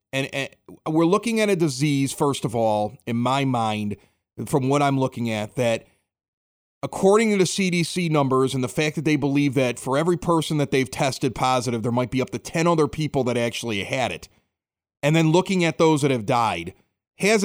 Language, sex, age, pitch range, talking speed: English, male, 30-49, 135-175 Hz, 205 wpm